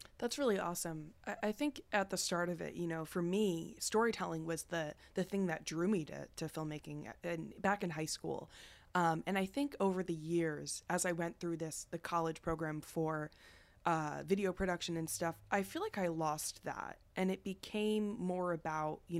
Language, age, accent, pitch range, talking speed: English, 20-39, American, 160-190 Hz, 195 wpm